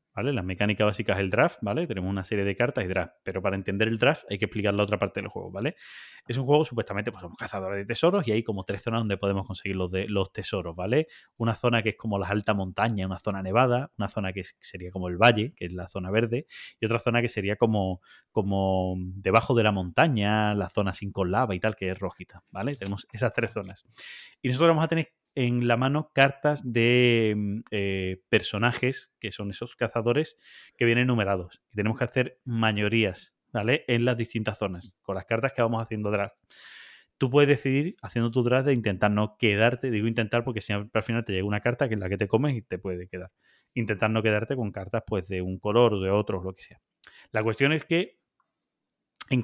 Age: 20-39